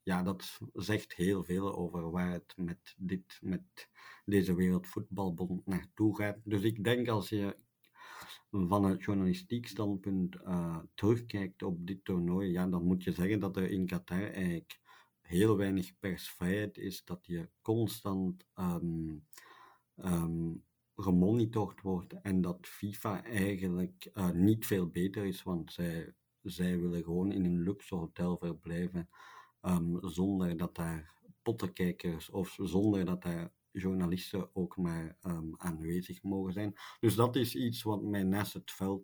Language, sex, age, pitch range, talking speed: Dutch, male, 50-69, 90-100 Hz, 145 wpm